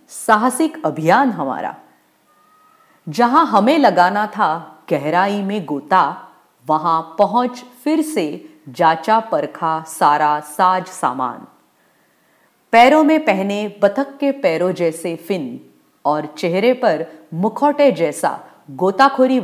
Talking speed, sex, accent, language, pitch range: 100 wpm, female, Indian, English, 165-265 Hz